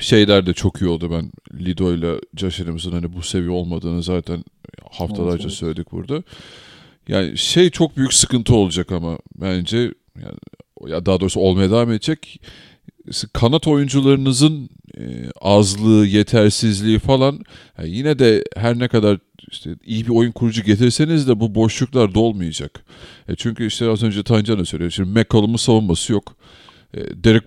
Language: Turkish